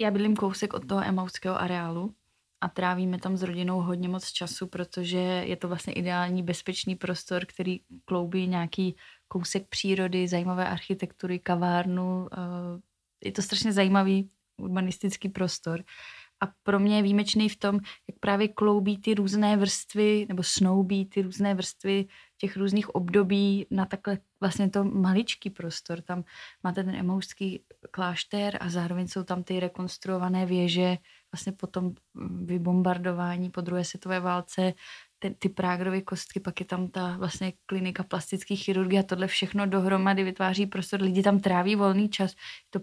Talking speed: 150 wpm